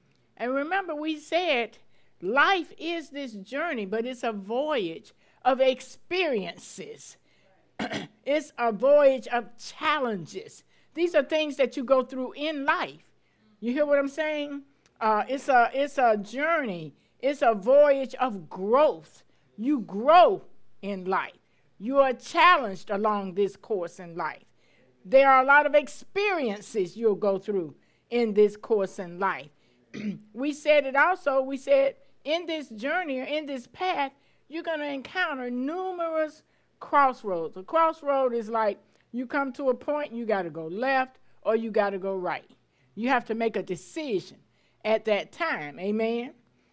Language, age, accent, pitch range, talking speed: English, 60-79, American, 210-290 Hz, 150 wpm